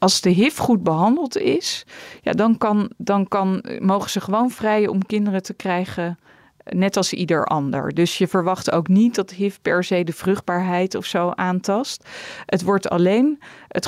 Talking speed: 175 wpm